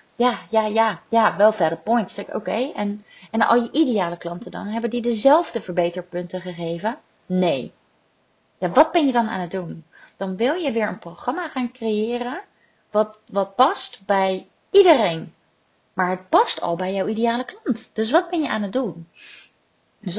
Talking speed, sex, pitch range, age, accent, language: 175 wpm, female, 185-235 Hz, 30-49, Dutch, Dutch